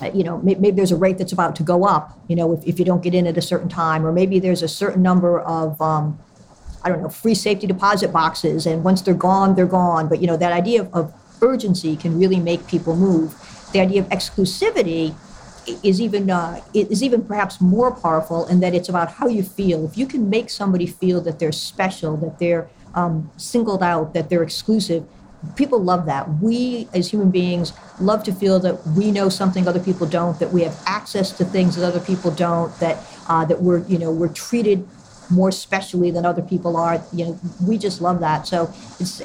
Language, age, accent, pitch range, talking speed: English, 50-69, American, 170-195 Hz, 220 wpm